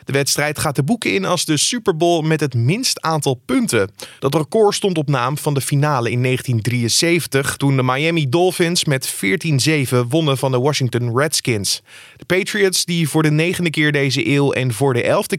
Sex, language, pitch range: male, Dutch, 130-170 Hz